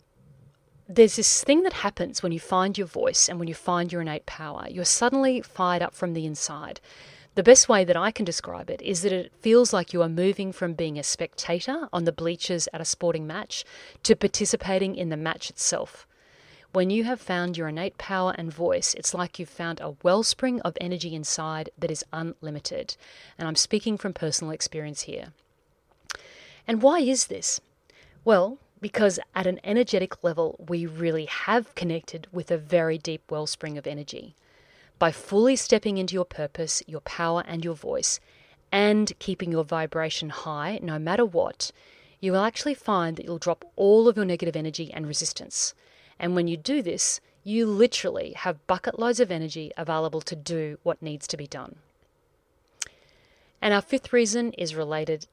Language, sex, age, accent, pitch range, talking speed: English, female, 40-59, Australian, 165-220 Hz, 180 wpm